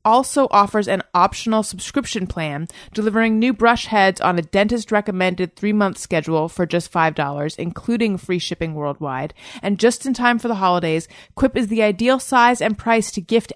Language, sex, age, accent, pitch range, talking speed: English, female, 30-49, American, 180-225 Hz, 170 wpm